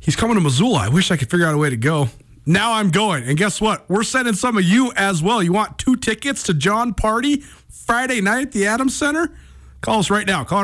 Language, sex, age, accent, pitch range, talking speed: English, male, 40-59, American, 140-195 Hz, 255 wpm